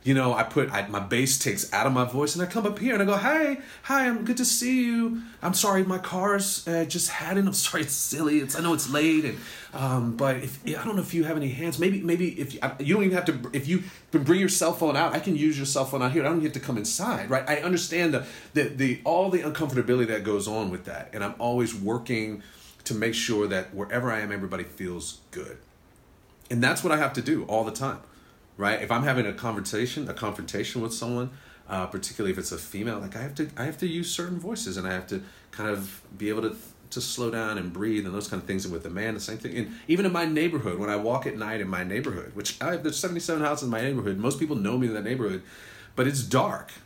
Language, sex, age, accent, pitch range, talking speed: English, male, 30-49, American, 110-165 Hz, 270 wpm